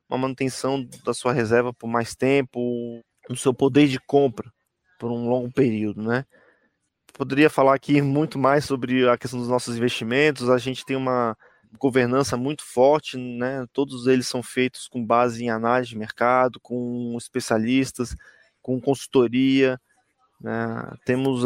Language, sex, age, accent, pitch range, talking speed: Portuguese, male, 20-39, Brazilian, 120-140 Hz, 150 wpm